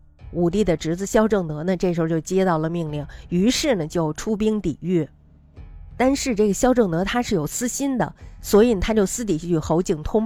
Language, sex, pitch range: Chinese, female, 160-215 Hz